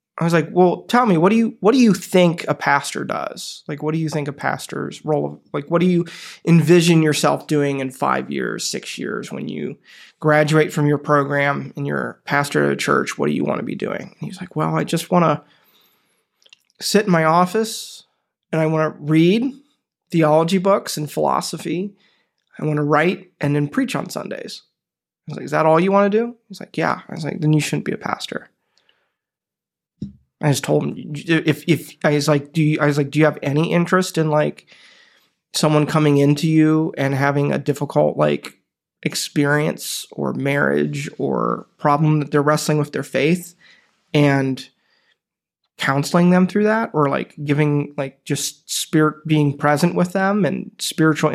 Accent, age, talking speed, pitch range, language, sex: American, 20-39, 195 wpm, 145-180 Hz, English, male